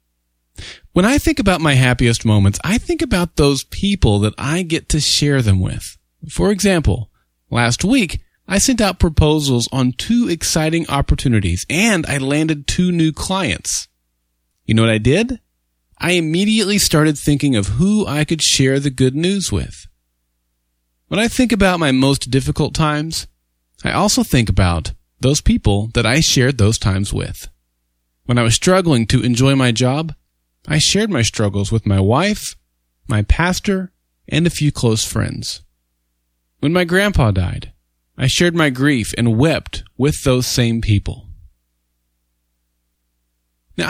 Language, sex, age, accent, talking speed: English, male, 30-49, American, 155 wpm